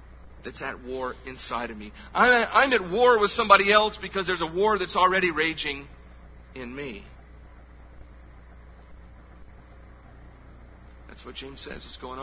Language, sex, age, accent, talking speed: English, male, 40-59, American, 135 wpm